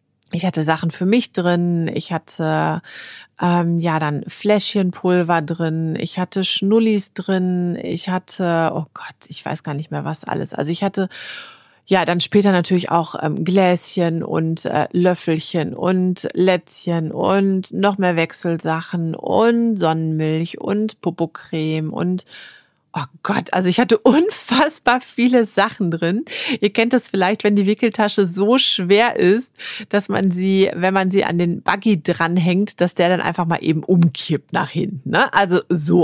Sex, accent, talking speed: female, German, 155 wpm